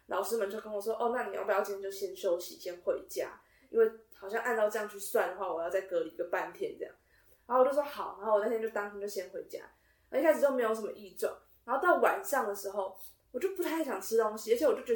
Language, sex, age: Chinese, female, 20-39